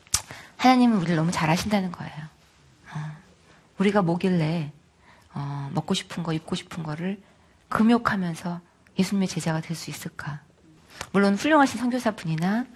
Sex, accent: female, native